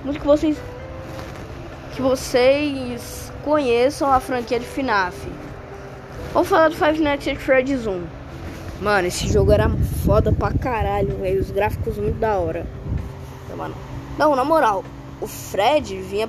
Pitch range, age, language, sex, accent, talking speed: 225-310 Hz, 10-29, Portuguese, female, Brazilian, 145 wpm